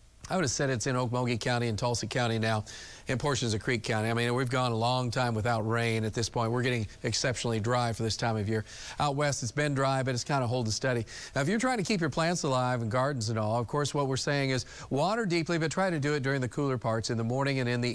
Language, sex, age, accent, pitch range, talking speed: English, male, 40-59, American, 120-140 Hz, 290 wpm